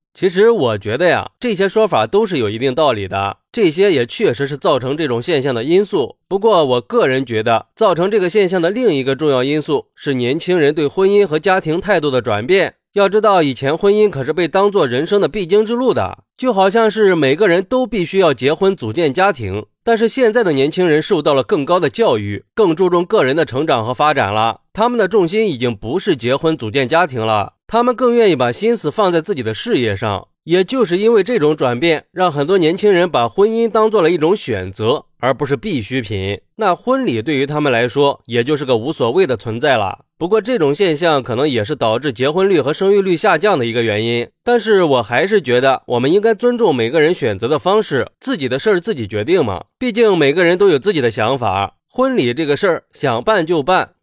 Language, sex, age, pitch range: Chinese, male, 30-49, 130-215 Hz